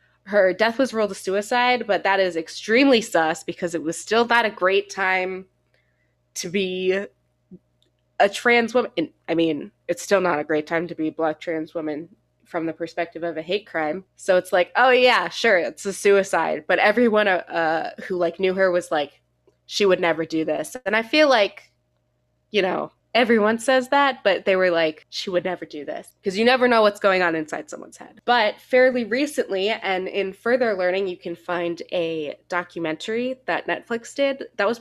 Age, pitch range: 20-39, 165-205 Hz